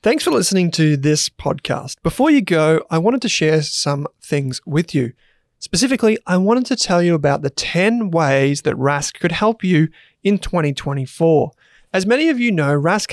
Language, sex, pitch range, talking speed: English, male, 145-185 Hz, 185 wpm